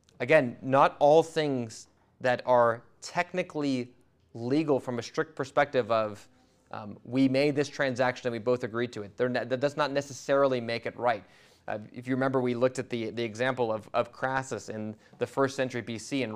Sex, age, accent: male, 20-39, American